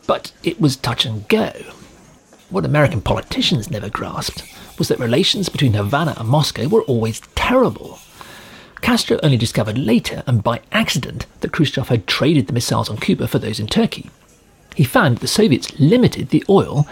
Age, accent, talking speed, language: 40-59, British, 165 wpm, English